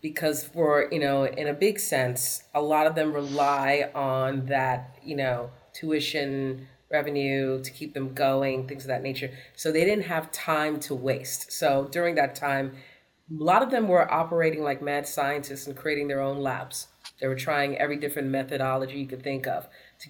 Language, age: English, 30-49